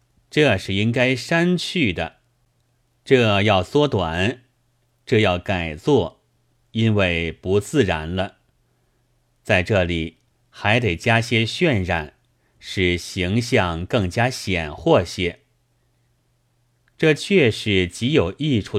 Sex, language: male, Chinese